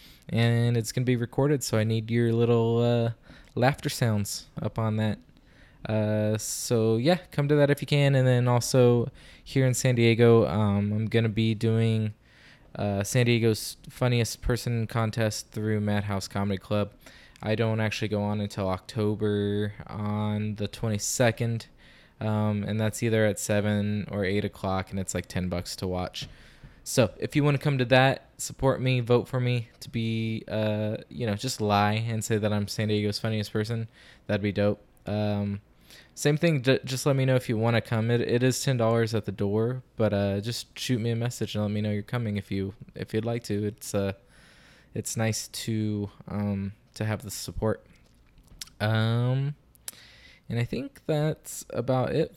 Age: 20-39